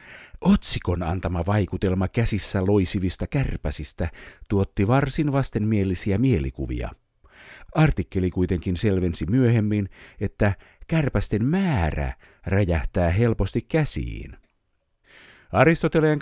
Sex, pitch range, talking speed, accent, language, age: male, 90-125 Hz, 80 wpm, native, Finnish, 50-69